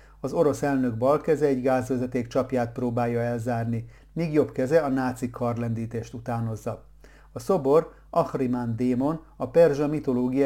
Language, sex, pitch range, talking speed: Hungarian, male, 120-145 Hz, 130 wpm